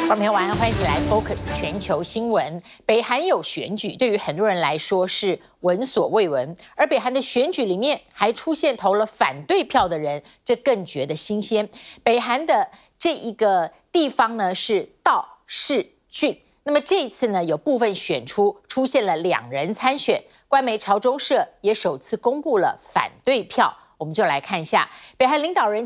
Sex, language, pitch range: female, Chinese, 185-275 Hz